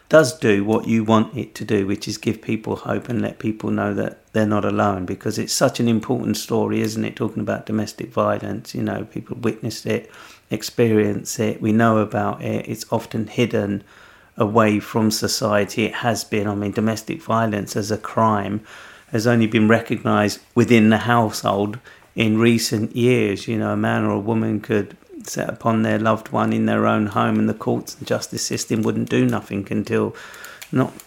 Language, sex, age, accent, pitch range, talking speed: English, male, 40-59, British, 105-115 Hz, 190 wpm